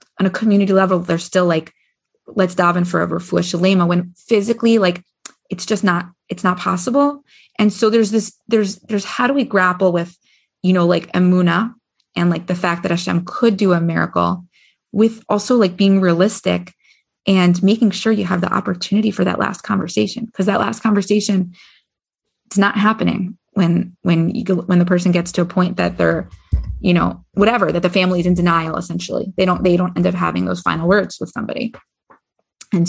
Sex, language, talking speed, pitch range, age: female, English, 185 wpm, 175-210 Hz, 20-39